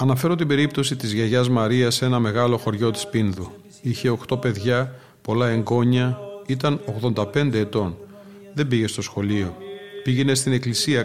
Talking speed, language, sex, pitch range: 145 wpm, Greek, male, 110-140 Hz